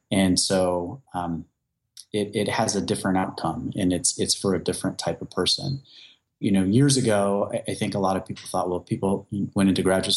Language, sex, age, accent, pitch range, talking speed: English, male, 30-49, American, 90-100 Hz, 200 wpm